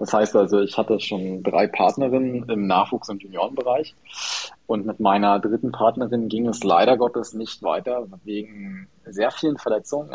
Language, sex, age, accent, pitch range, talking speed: German, male, 20-39, German, 105-125 Hz, 160 wpm